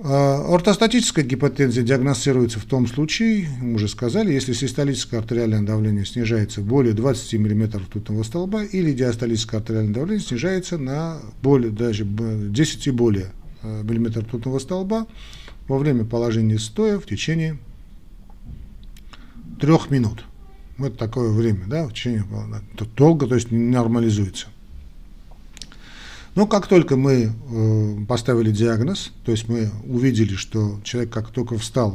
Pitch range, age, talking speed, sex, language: 110-140 Hz, 40-59, 130 wpm, male, Russian